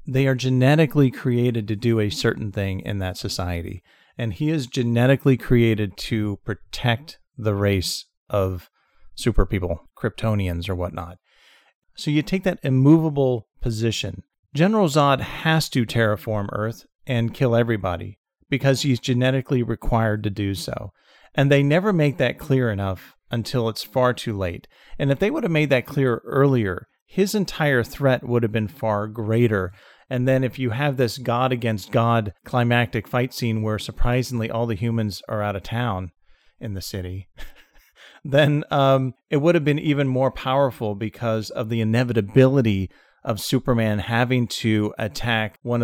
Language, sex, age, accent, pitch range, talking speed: English, male, 40-59, American, 105-130 Hz, 155 wpm